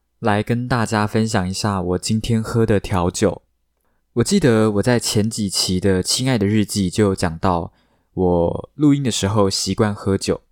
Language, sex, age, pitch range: Chinese, male, 20-39, 95-115 Hz